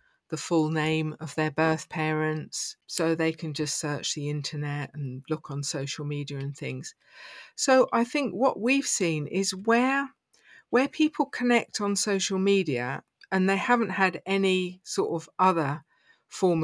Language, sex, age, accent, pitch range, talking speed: English, female, 50-69, British, 160-195 Hz, 160 wpm